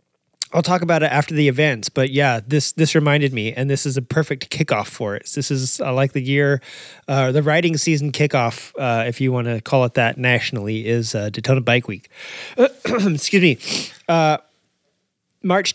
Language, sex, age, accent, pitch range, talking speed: English, male, 30-49, American, 125-160 Hz, 195 wpm